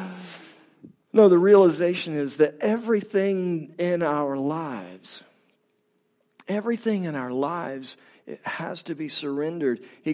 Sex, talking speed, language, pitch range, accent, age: male, 110 wpm, English, 145-200 Hz, American, 40-59